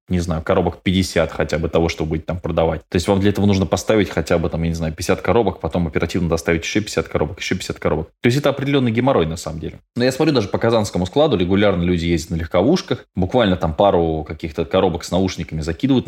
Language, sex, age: Russian, male, 20-39